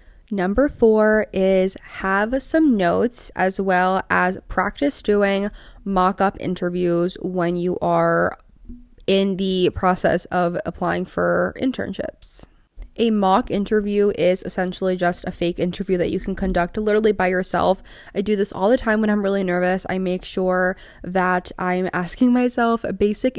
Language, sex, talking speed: English, female, 145 wpm